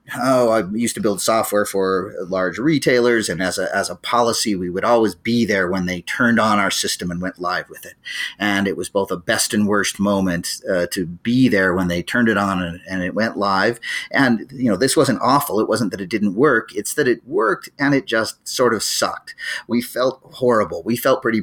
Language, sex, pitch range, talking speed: English, male, 95-115 Hz, 230 wpm